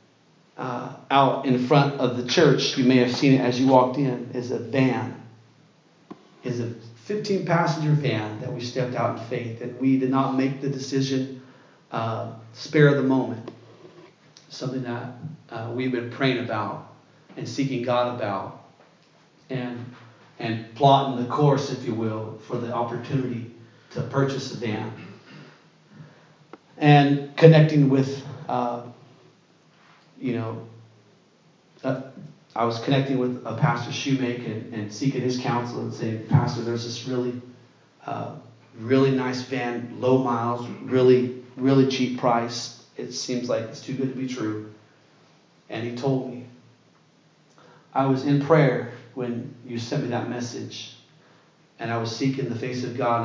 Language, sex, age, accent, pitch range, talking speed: English, male, 40-59, American, 120-135 Hz, 150 wpm